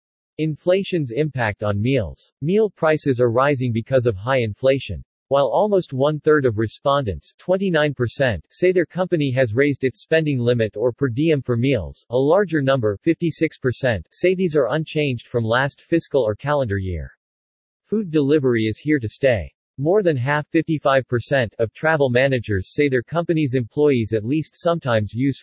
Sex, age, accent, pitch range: male, 40-59, American, 115-155 Hz